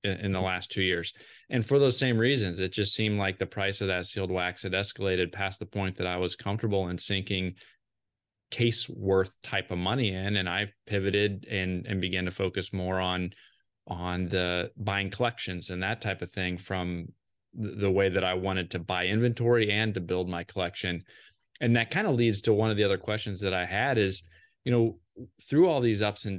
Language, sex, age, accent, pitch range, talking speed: English, male, 20-39, American, 95-120 Hz, 210 wpm